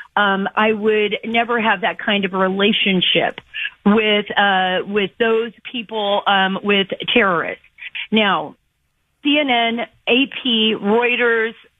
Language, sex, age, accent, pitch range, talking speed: English, female, 40-59, American, 190-230 Hz, 110 wpm